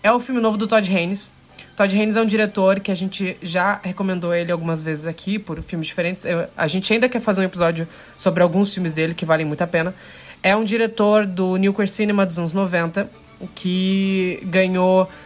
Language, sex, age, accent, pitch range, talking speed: Portuguese, female, 20-39, Brazilian, 170-200 Hz, 200 wpm